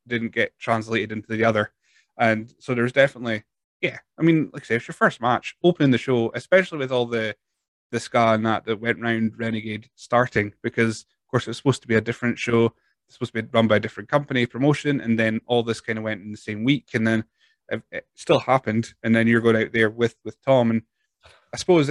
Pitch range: 110-120 Hz